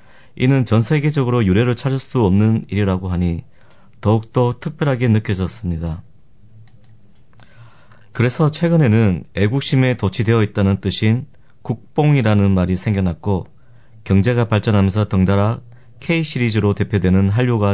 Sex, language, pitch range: male, Korean, 100-125 Hz